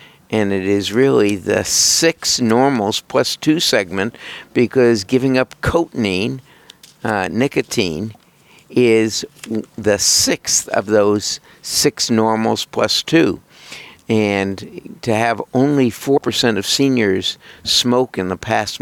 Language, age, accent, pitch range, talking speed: English, 60-79, American, 100-120 Hz, 115 wpm